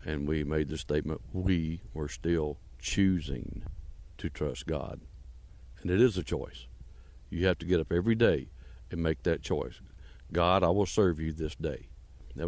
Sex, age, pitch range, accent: male, 60-79, 70-85 Hz, American